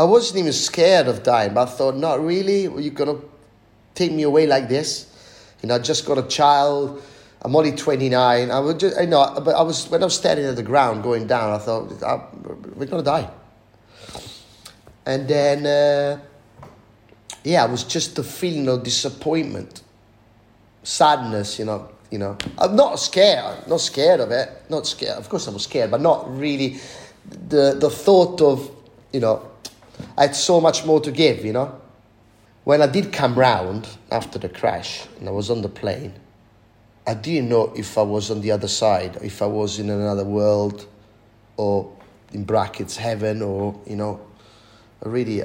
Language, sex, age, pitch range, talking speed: English, male, 30-49, 105-140 Hz, 180 wpm